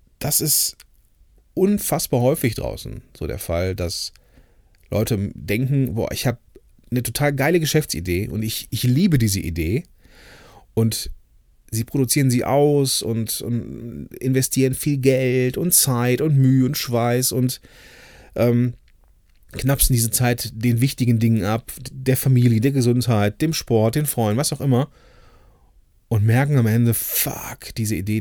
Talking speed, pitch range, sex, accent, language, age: 145 wpm, 95-130 Hz, male, German, German, 30-49